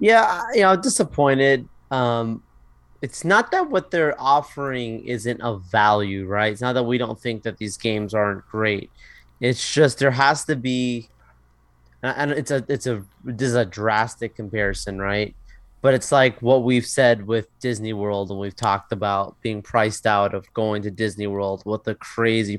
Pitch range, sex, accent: 110-130 Hz, male, American